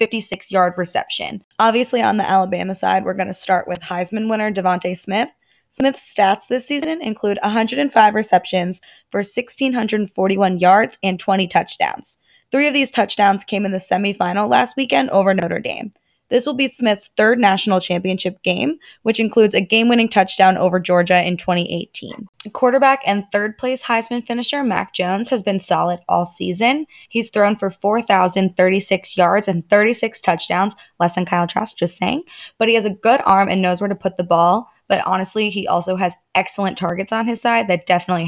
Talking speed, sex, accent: 175 wpm, female, American